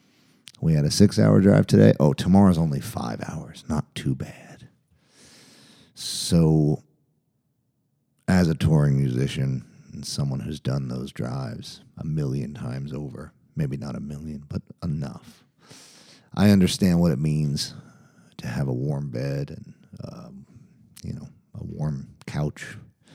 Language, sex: English, male